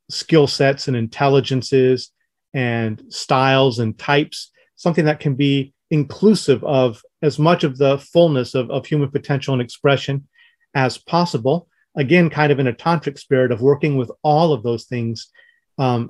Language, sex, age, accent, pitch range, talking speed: English, male, 30-49, American, 120-150 Hz, 155 wpm